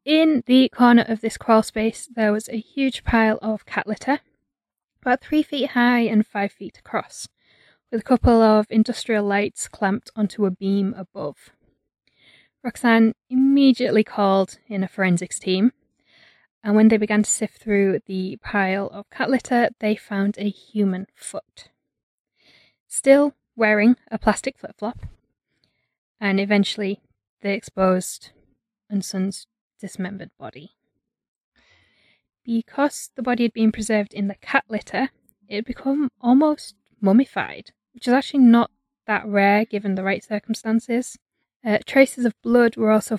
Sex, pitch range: female, 200-245 Hz